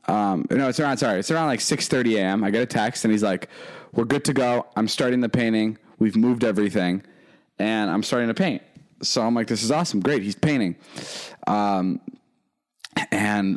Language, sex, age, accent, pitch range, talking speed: English, male, 20-39, American, 100-120 Hz, 195 wpm